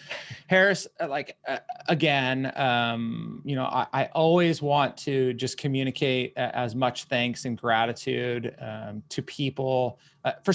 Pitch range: 125-145 Hz